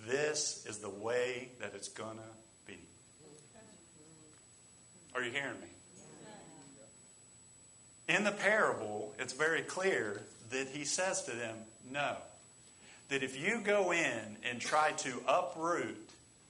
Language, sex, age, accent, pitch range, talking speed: English, male, 50-69, American, 120-170 Hz, 125 wpm